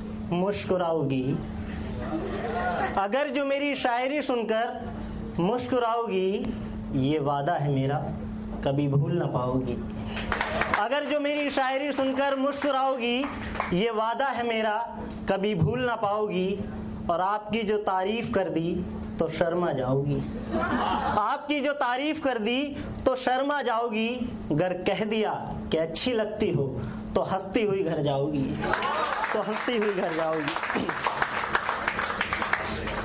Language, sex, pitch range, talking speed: Hindi, male, 165-255 Hz, 115 wpm